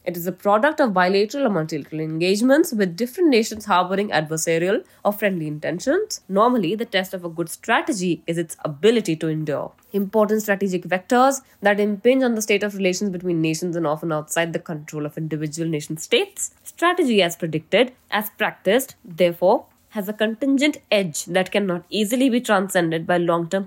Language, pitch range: English, 165-215 Hz